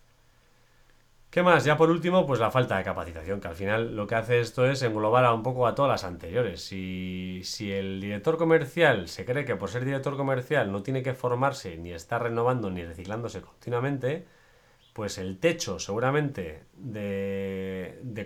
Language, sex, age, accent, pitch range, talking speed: Spanish, male, 30-49, Spanish, 100-150 Hz, 180 wpm